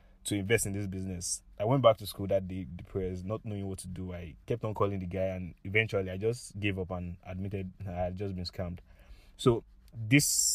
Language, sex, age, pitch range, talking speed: English, male, 20-39, 90-100 Hz, 230 wpm